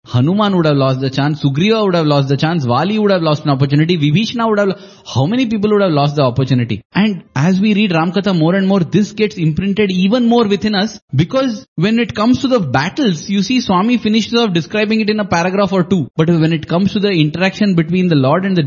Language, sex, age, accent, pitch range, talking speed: English, male, 10-29, Indian, 145-195 Hz, 245 wpm